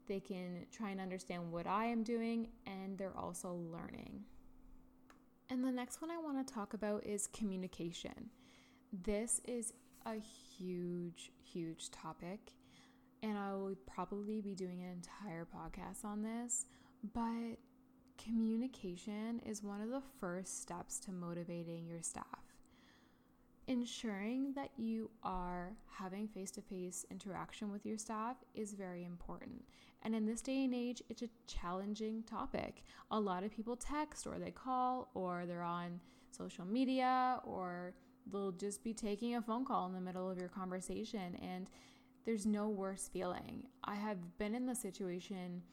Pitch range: 185-240 Hz